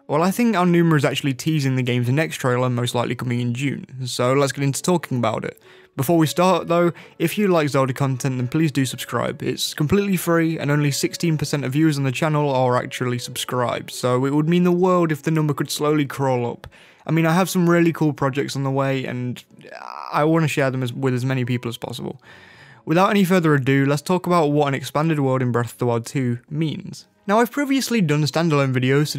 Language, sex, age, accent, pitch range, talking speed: English, male, 20-39, British, 130-170 Hz, 230 wpm